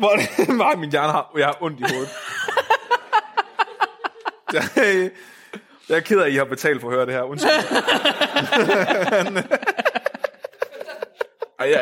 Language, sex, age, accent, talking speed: Danish, male, 20-39, native, 135 wpm